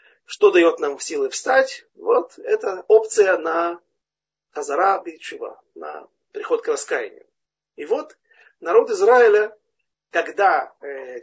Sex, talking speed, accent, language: male, 110 wpm, native, Russian